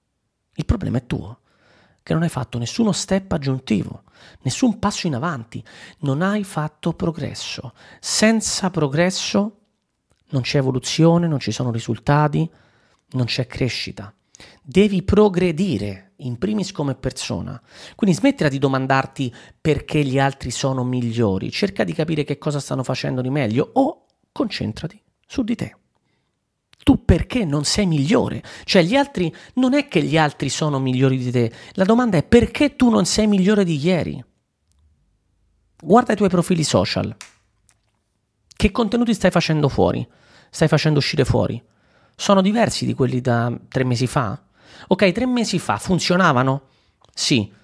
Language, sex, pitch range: Italian, male, 120-185 Hz